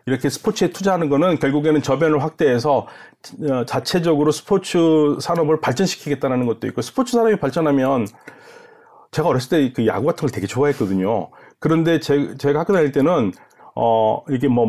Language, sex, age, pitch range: Korean, male, 30-49, 140-220 Hz